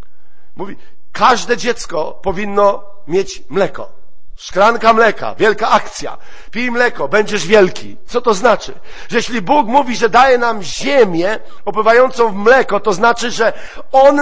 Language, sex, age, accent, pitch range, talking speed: Polish, male, 50-69, native, 210-255 Hz, 135 wpm